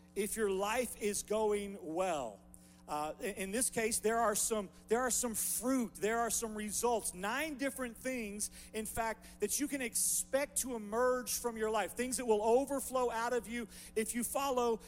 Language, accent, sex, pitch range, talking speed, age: English, American, male, 165-225 Hz, 180 wpm, 40-59